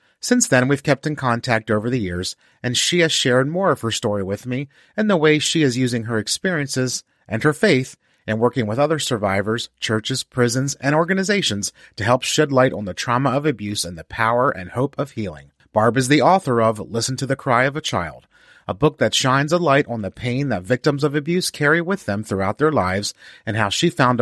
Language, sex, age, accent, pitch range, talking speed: English, male, 30-49, American, 110-150 Hz, 225 wpm